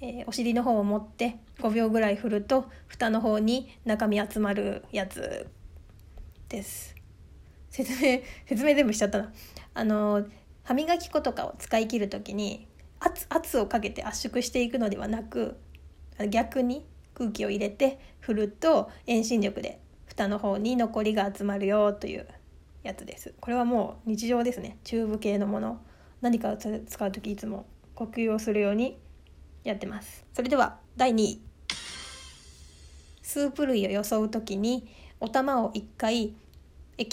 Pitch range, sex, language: 200-245 Hz, female, Japanese